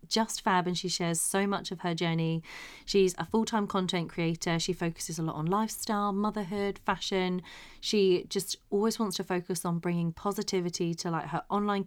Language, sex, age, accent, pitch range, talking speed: English, female, 30-49, British, 170-200 Hz, 180 wpm